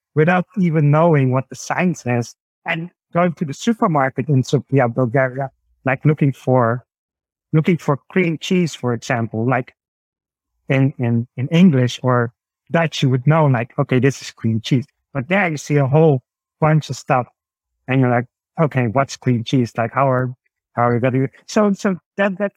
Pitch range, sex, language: 130-170 Hz, male, English